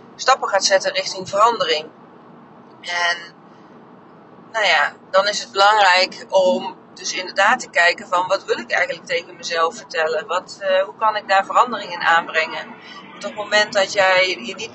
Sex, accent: female, Dutch